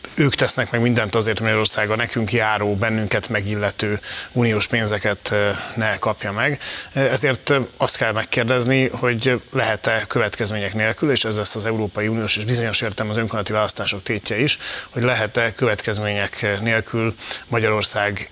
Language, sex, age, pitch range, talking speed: Hungarian, male, 30-49, 105-120 Hz, 140 wpm